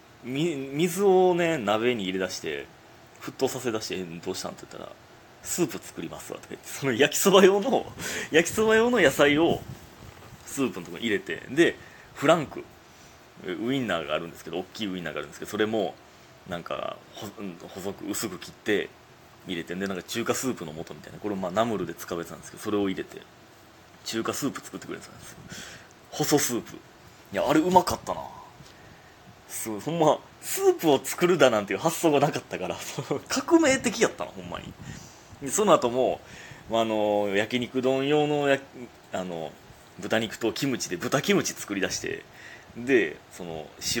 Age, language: 30-49, Japanese